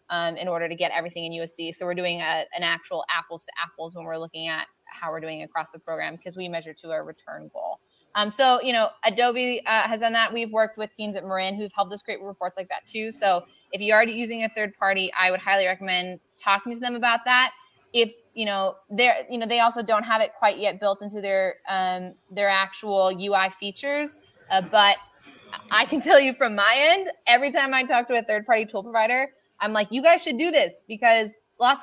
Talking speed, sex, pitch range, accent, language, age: 230 wpm, female, 185-240 Hz, American, English, 20-39